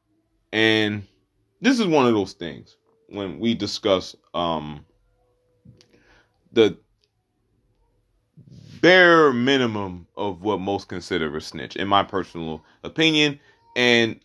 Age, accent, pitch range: 20-39, American, 95-120 Hz